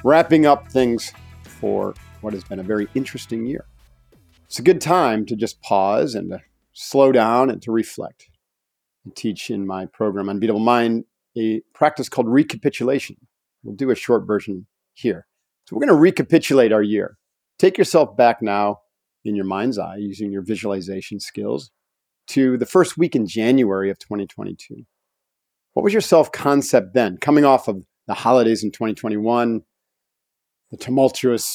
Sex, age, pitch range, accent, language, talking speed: male, 50-69, 105-130 Hz, American, English, 155 wpm